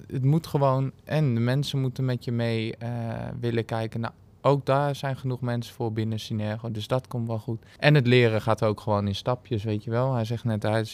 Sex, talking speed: male, 235 wpm